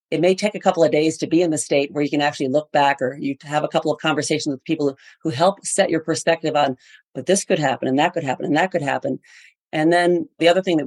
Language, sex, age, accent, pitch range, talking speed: English, female, 40-59, American, 145-180 Hz, 280 wpm